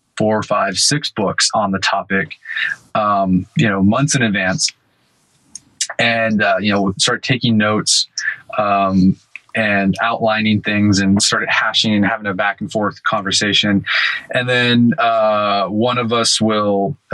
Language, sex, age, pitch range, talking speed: English, male, 20-39, 100-120 Hz, 150 wpm